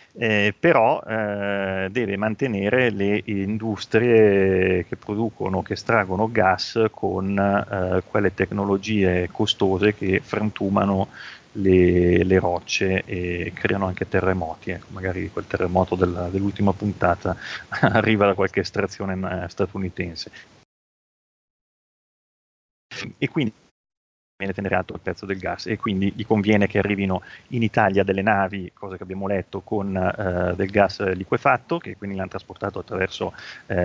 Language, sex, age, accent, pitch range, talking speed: Italian, male, 30-49, native, 90-110 Hz, 125 wpm